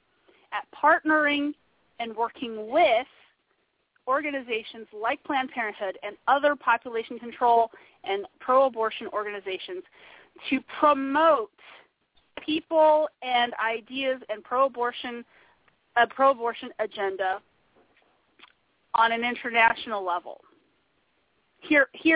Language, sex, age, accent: English, female, 30-49, American